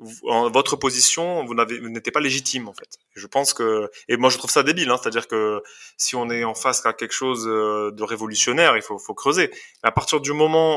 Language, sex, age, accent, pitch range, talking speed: French, male, 20-39, French, 110-130 Hz, 230 wpm